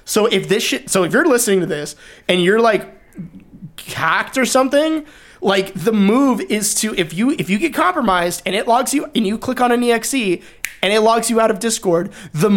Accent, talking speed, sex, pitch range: American, 215 wpm, male, 175-230 Hz